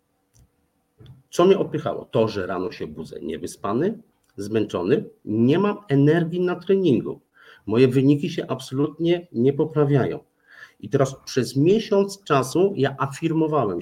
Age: 50-69